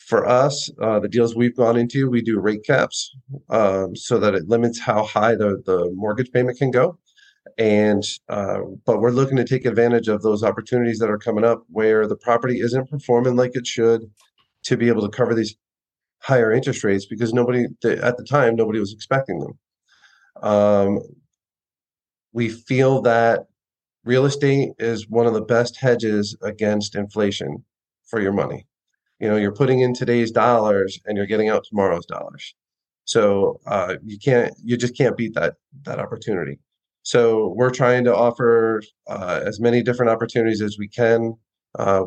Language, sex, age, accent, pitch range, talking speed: English, male, 30-49, American, 105-125 Hz, 175 wpm